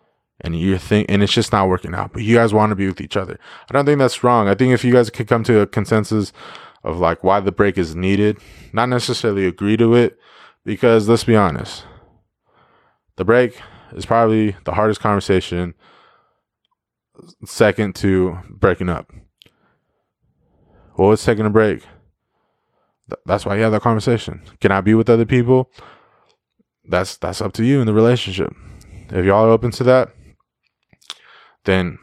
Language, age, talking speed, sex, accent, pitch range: English, 20-39, 170 wpm, male, American, 95-115 Hz